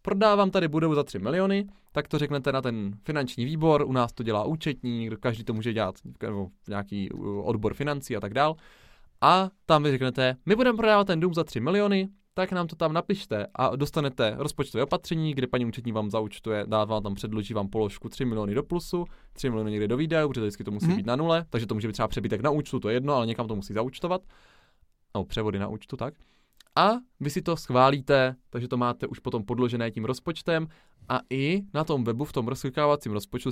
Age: 20-39